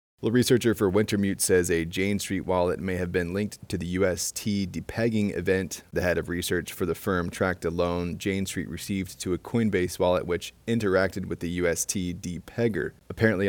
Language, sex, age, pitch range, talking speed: English, male, 30-49, 85-100 Hz, 185 wpm